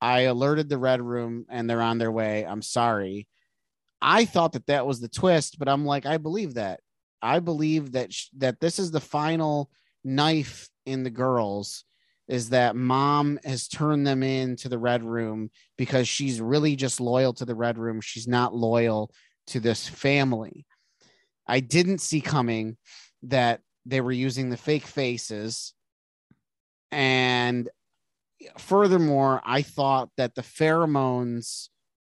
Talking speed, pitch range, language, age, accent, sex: 150 wpm, 120-145 Hz, English, 30-49, American, male